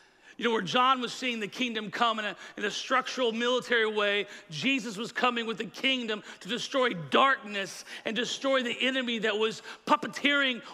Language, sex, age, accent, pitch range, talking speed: English, male, 40-59, American, 195-235 Hz, 180 wpm